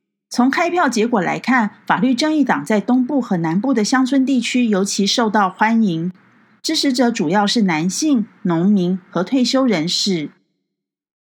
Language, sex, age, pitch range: Chinese, female, 40-59, 195-255 Hz